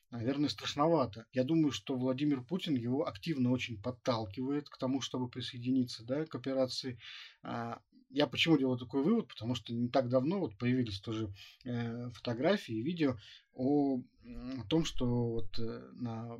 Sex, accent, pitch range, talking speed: male, native, 115-135 Hz, 135 wpm